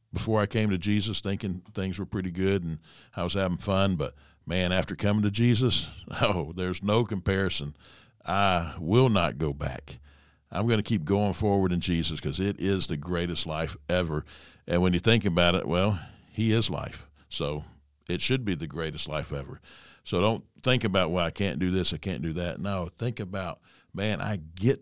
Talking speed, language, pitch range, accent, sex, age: 200 wpm, English, 85-110 Hz, American, male, 60-79